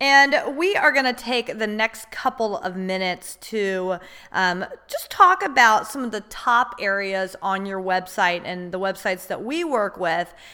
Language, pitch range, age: English, 200-275 Hz, 30-49